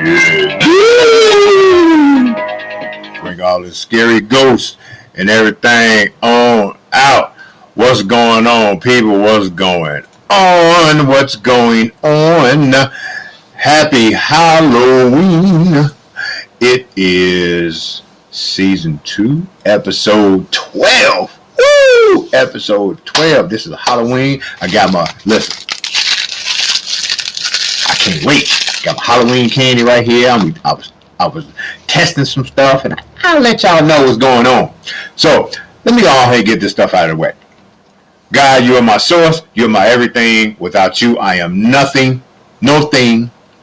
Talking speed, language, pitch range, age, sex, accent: 125 wpm, English, 110-155 Hz, 50-69, male, American